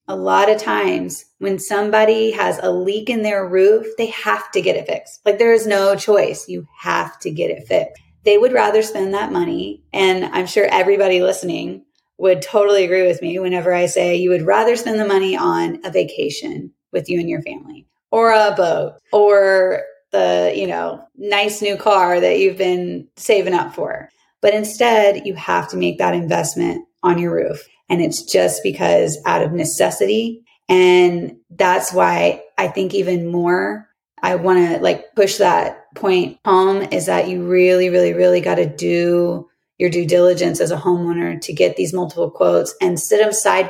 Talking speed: 185 wpm